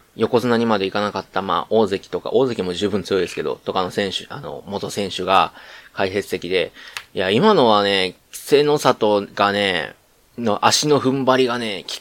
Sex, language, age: male, Japanese, 20-39